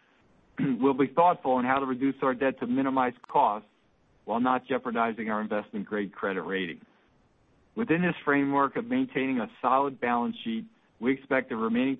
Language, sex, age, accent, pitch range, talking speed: English, male, 50-69, American, 120-155 Hz, 160 wpm